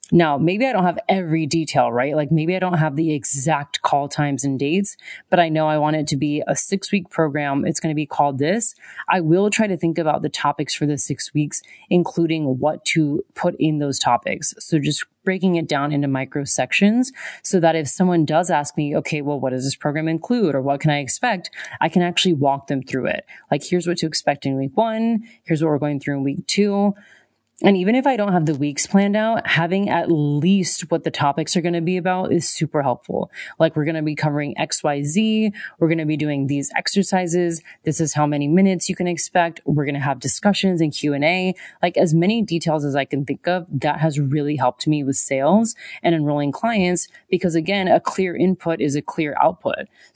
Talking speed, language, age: 225 wpm, English, 30-49